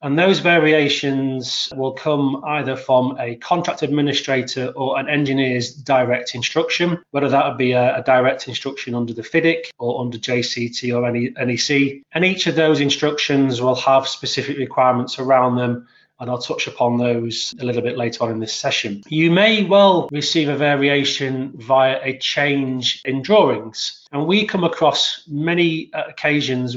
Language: English